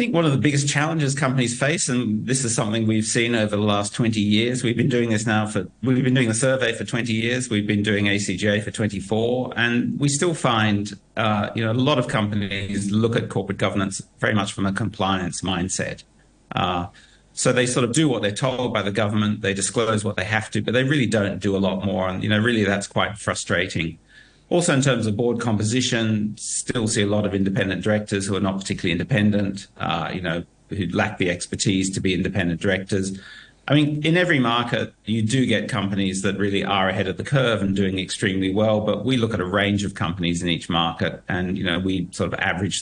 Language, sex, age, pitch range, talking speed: English, male, 40-59, 95-115 Hz, 225 wpm